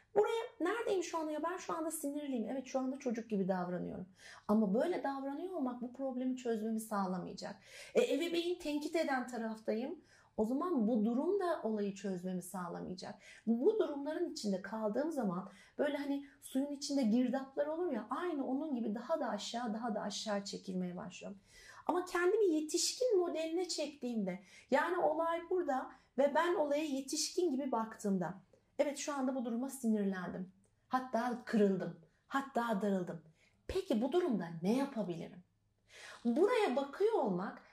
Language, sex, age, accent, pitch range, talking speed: Turkish, female, 40-59, native, 210-315 Hz, 145 wpm